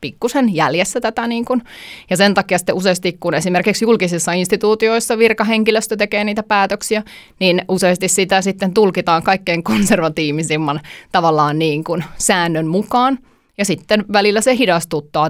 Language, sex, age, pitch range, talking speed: Finnish, female, 20-39, 165-210 Hz, 135 wpm